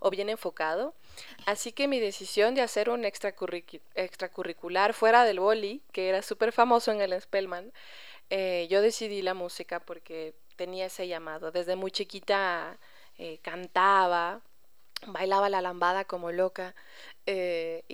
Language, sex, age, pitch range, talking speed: Spanish, female, 20-39, 180-215 Hz, 140 wpm